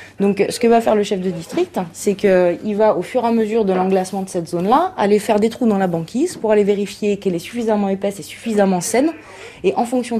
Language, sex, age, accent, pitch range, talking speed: French, female, 20-39, French, 175-210 Hz, 245 wpm